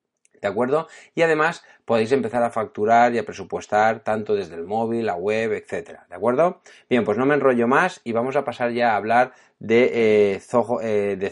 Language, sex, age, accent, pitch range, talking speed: Spanish, male, 30-49, Spanish, 105-130 Hz, 185 wpm